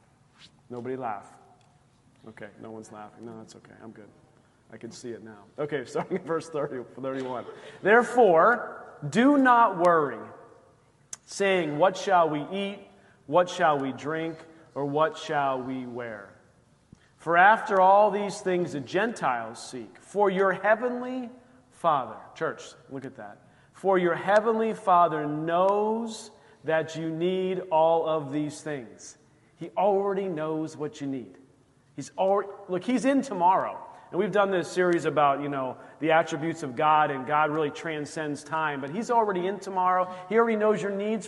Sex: male